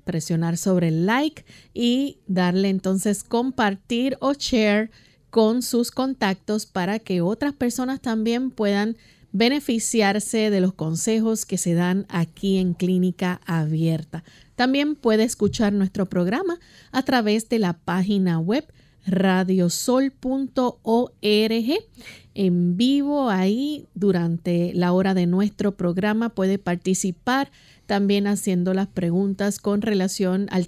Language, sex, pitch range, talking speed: Spanish, female, 180-230 Hz, 115 wpm